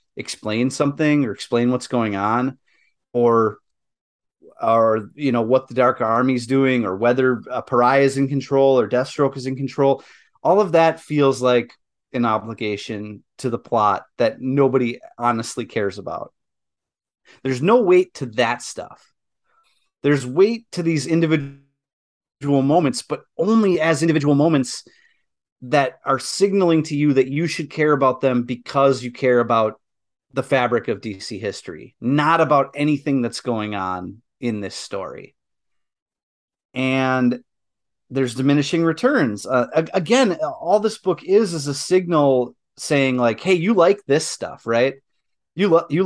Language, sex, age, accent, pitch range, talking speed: English, male, 30-49, American, 120-155 Hz, 150 wpm